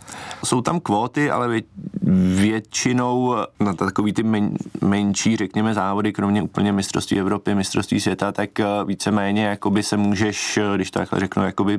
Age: 20-39